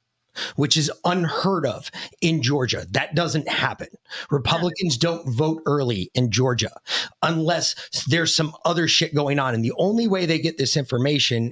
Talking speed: 155 wpm